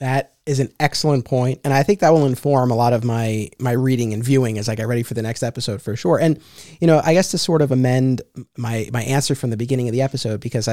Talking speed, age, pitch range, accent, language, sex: 270 wpm, 30-49, 115-140 Hz, American, English, male